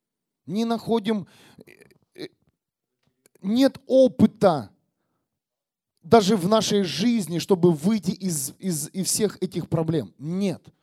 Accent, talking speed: native, 95 wpm